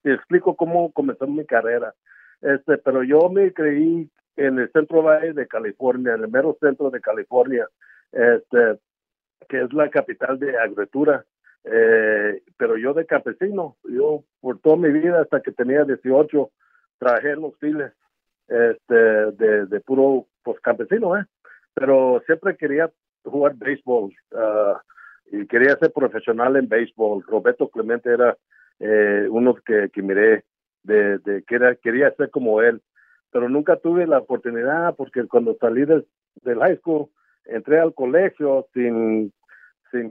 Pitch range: 125-175 Hz